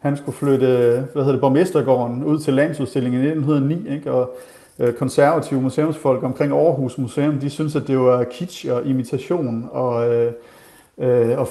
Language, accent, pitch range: Danish, native, 130-150 Hz